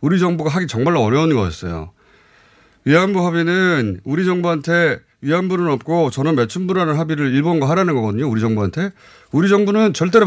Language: Korean